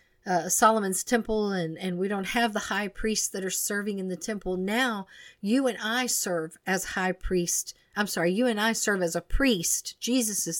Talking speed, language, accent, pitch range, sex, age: 205 wpm, English, American, 185-235 Hz, female, 50-69